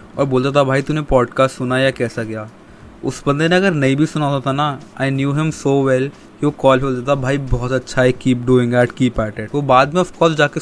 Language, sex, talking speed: Hindi, male, 250 wpm